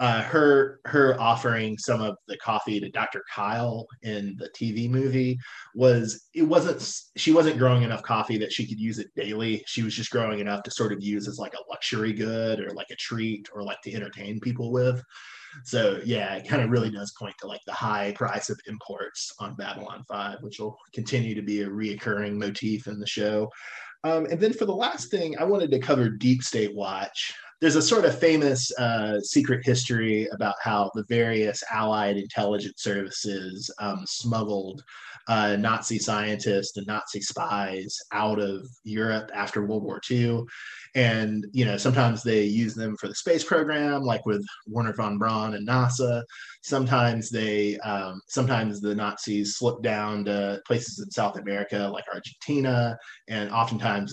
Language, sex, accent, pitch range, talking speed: English, male, American, 105-125 Hz, 180 wpm